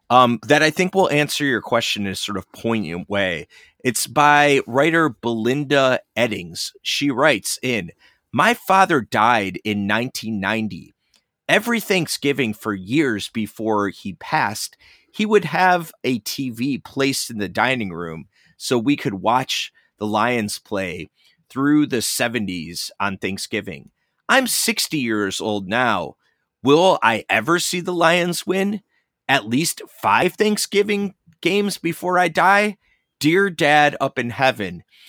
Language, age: English, 30-49